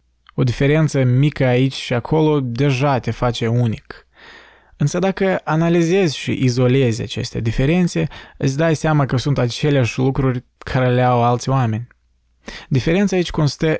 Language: Romanian